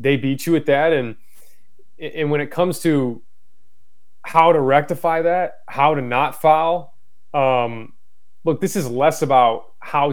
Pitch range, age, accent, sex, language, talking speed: 130-160 Hz, 20-39, American, male, English, 155 wpm